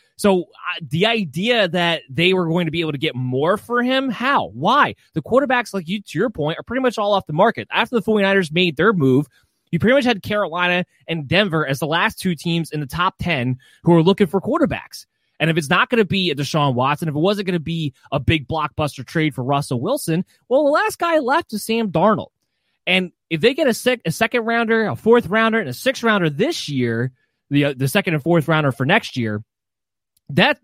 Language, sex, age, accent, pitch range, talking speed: English, male, 20-39, American, 145-200 Hz, 225 wpm